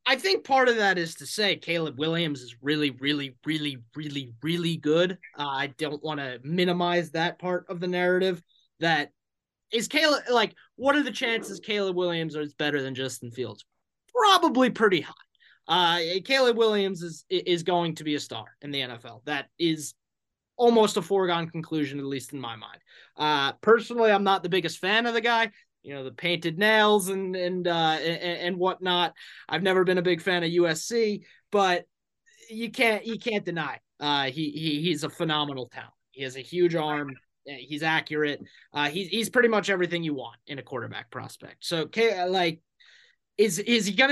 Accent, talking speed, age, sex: American, 190 wpm, 20-39, male